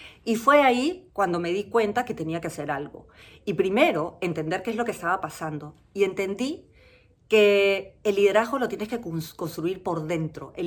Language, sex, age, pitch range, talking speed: Spanish, female, 40-59, 170-230 Hz, 185 wpm